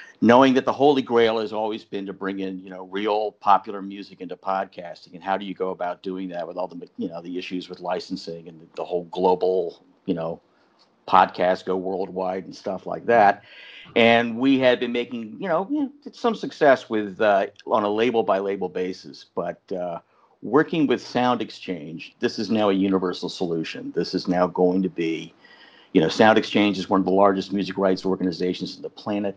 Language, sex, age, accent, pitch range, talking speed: English, male, 50-69, American, 90-105 Hz, 200 wpm